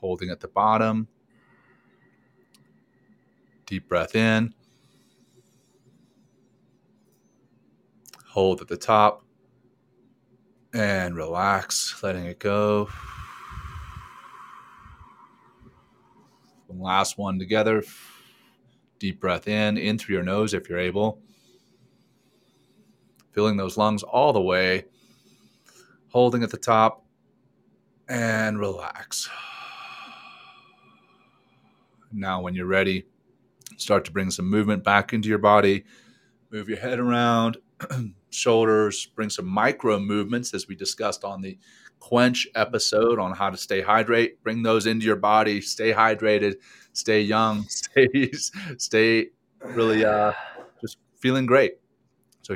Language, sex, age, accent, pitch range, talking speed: English, male, 30-49, American, 100-115 Hz, 105 wpm